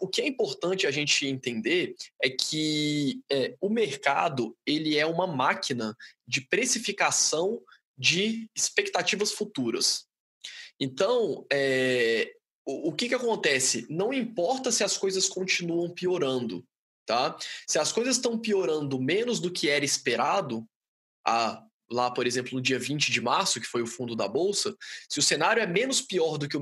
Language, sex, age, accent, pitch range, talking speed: Portuguese, male, 20-39, Brazilian, 130-200 Hz, 150 wpm